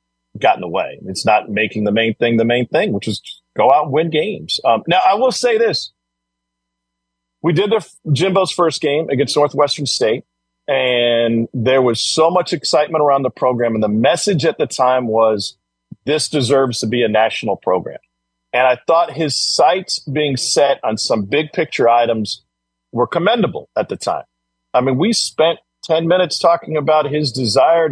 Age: 40-59